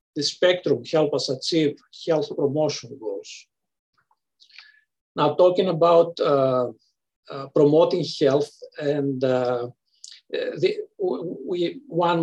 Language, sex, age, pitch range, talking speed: English, male, 50-69, 145-180 Hz, 95 wpm